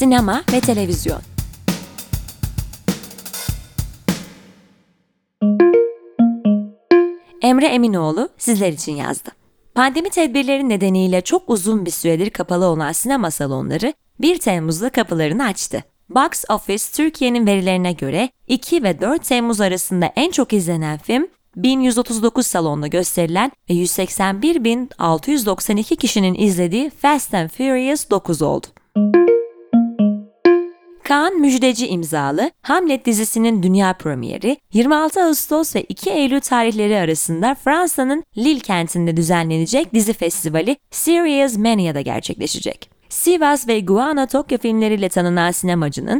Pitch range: 185-270 Hz